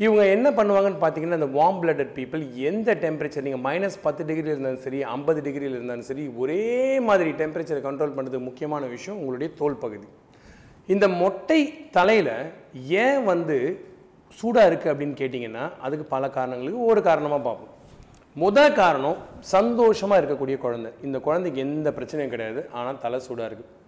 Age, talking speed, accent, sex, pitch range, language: 30-49, 145 wpm, native, male, 130-185 Hz, Tamil